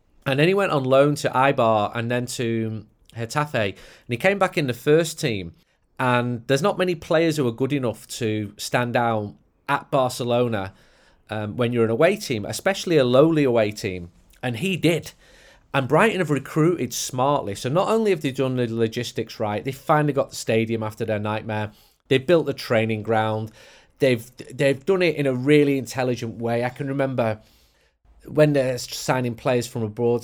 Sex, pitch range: male, 115-150 Hz